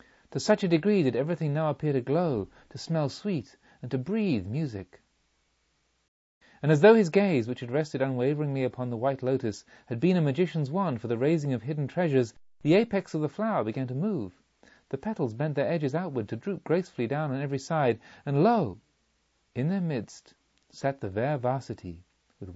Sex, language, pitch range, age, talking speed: male, English, 115-160 Hz, 40-59, 190 wpm